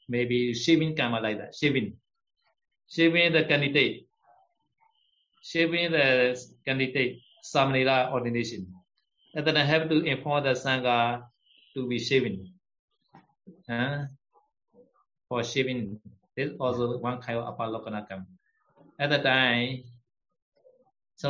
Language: Vietnamese